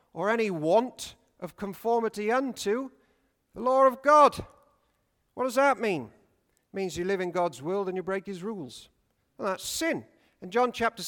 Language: English